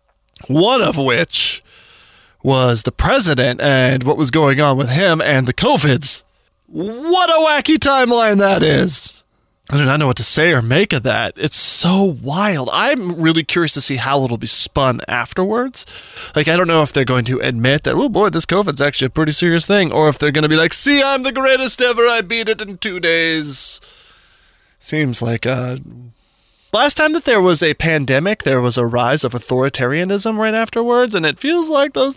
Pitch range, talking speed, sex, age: 130-200 Hz, 195 wpm, male, 20-39